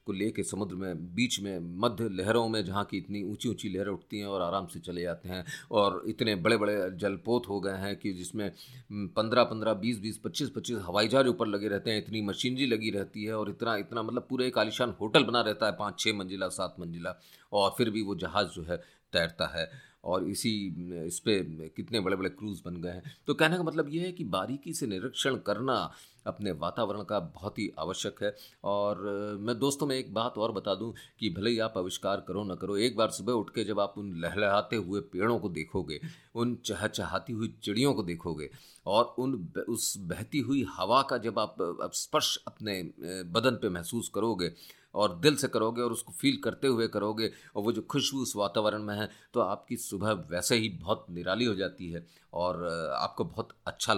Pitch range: 95-120 Hz